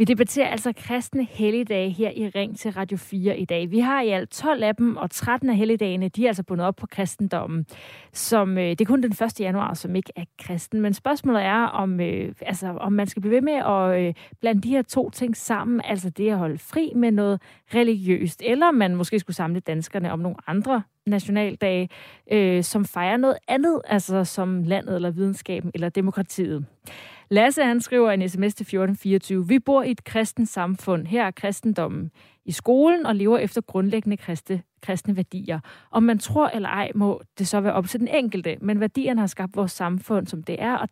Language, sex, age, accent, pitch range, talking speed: Danish, female, 30-49, native, 185-230 Hz, 200 wpm